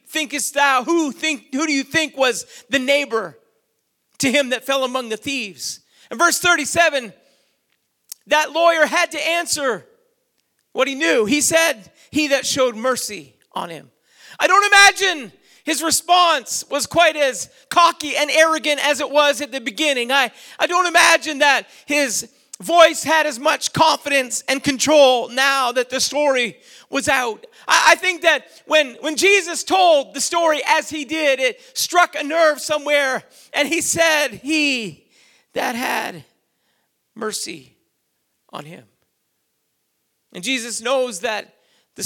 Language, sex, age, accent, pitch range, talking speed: English, male, 40-59, American, 250-315 Hz, 150 wpm